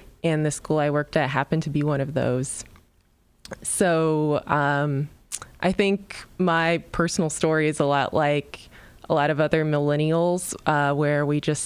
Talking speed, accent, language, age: 165 wpm, American, English, 20-39